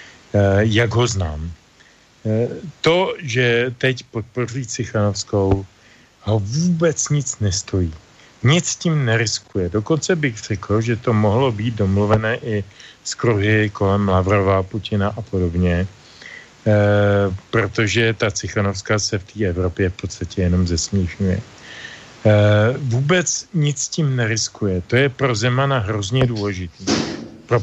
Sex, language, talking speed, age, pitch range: male, Slovak, 115 wpm, 40-59, 105-130 Hz